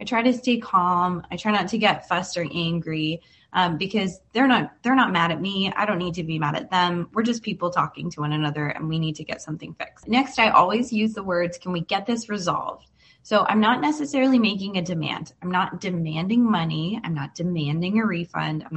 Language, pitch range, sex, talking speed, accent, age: English, 165-220 Hz, female, 225 wpm, American, 20-39